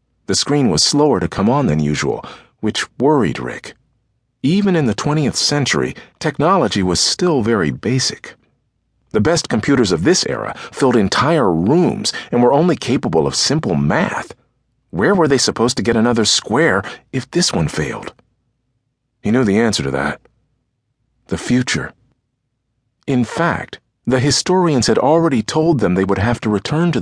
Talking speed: 160 wpm